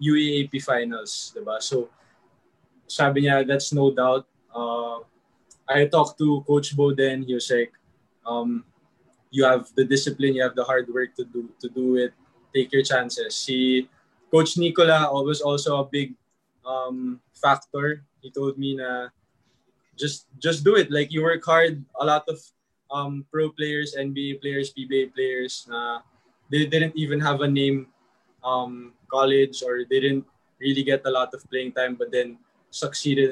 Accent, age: Filipino, 20-39